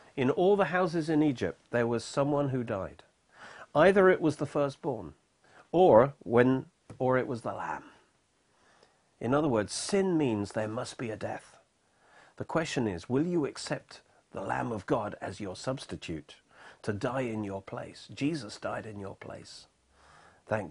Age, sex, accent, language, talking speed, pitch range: 40-59, male, British, English, 165 wpm, 95-135 Hz